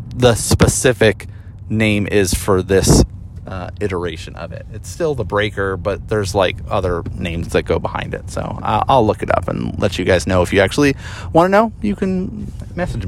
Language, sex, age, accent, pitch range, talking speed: English, male, 30-49, American, 95-125 Hz, 195 wpm